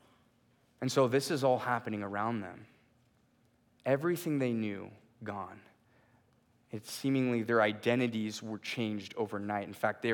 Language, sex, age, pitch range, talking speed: English, male, 20-39, 110-130 Hz, 130 wpm